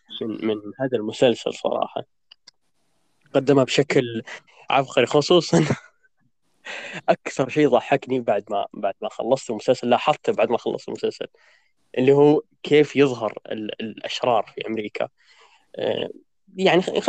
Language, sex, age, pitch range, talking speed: Arabic, male, 20-39, 125-160 Hz, 125 wpm